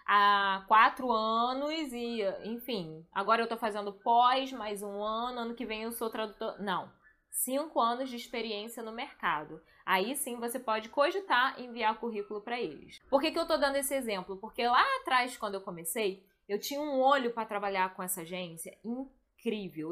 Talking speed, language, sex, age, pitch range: 180 wpm, Portuguese, female, 10-29, 195-250 Hz